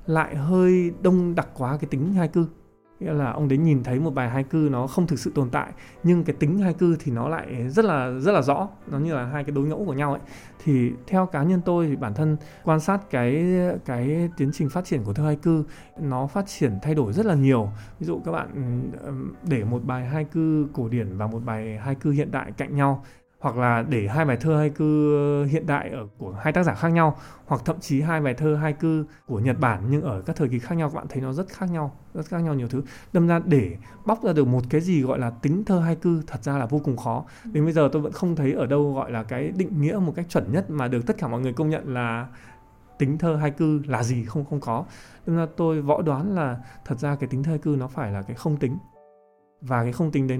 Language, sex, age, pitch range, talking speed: English, male, 20-39, 130-160 Hz, 270 wpm